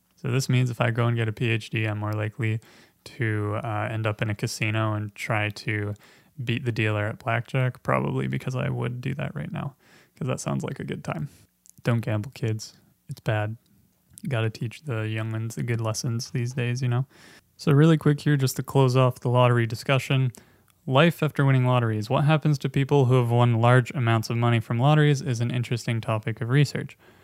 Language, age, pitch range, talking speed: English, 20-39, 110-135 Hz, 205 wpm